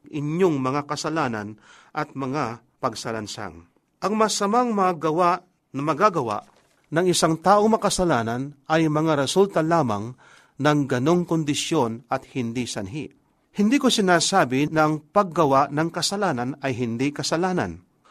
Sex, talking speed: male, 115 wpm